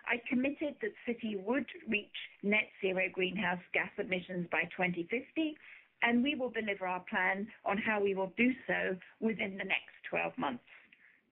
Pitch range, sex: 185-245 Hz, female